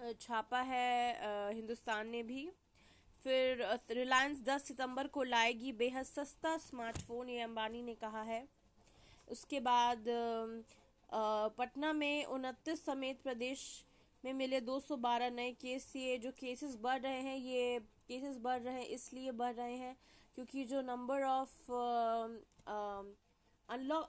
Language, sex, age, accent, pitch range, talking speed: Hindi, female, 20-39, native, 225-260 Hz, 130 wpm